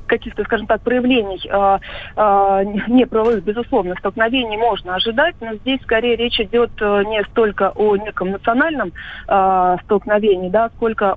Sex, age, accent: female, 30-49, native